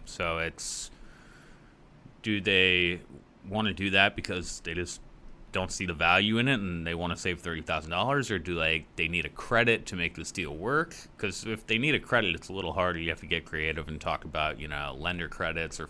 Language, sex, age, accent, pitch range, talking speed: English, male, 30-49, American, 80-95 Hz, 220 wpm